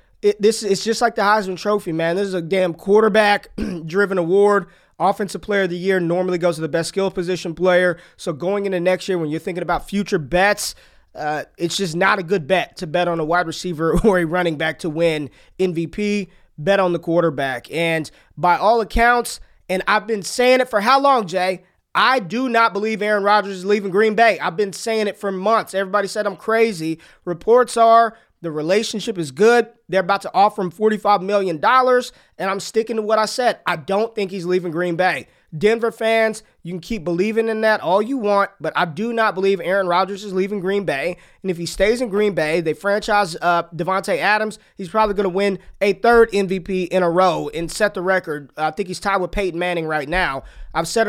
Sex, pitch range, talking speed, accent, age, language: male, 175-210 Hz, 215 wpm, American, 20-39, English